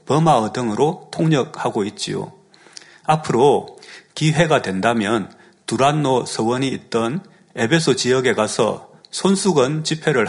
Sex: male